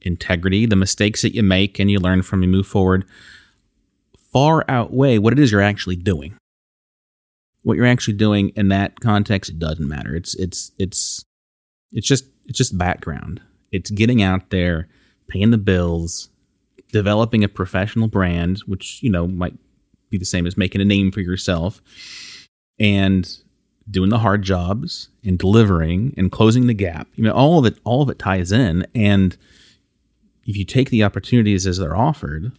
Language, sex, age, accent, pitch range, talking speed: English, male, 30-49, American, 90-110 Hz, 170 wpm